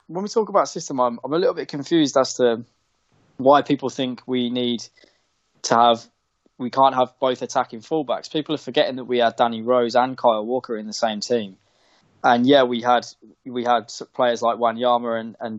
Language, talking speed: English, 205 wpm